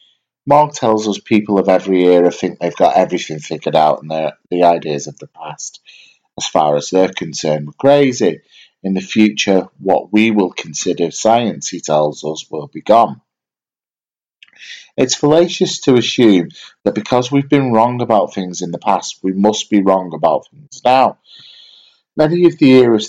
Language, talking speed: English, 170 wpm